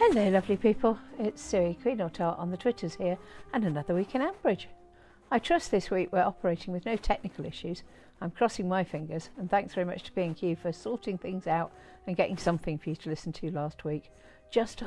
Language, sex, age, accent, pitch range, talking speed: English, female, 50-69, British, 155-200 Hz, 210 wpm